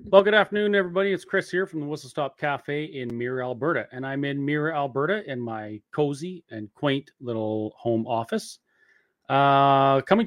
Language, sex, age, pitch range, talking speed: English, male, 30-49, 120-175 Hz, 175 wpm